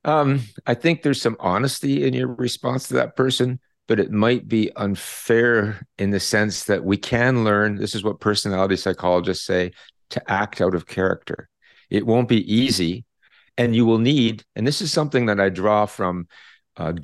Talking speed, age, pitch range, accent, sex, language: 185 wpm, 50-69, 100-130 Hz, American, male, Hebrew